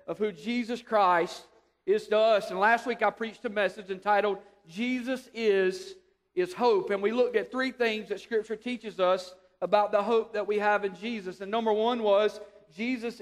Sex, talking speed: male, 190 wpm